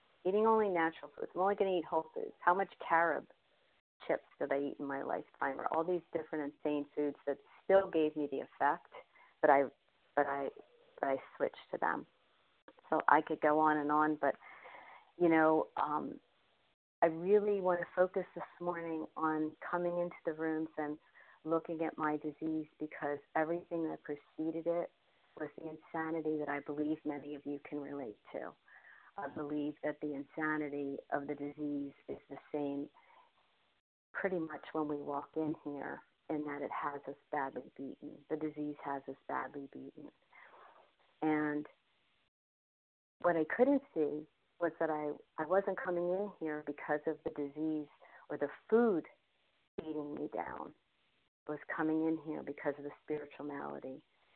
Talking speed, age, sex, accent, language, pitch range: 165 wpm, 40-59, female, American, English, 145-170 Hz